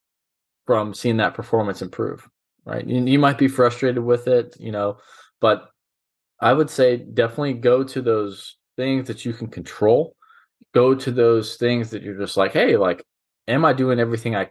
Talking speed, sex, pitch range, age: 180 wpm, male, 105-130 Hz, 20-39